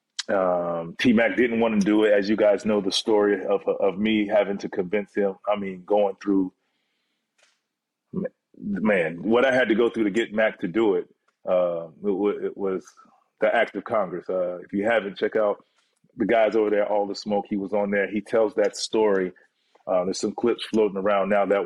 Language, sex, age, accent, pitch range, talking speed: English, male, 30-49, American, 100-115 Hz, 210 wpm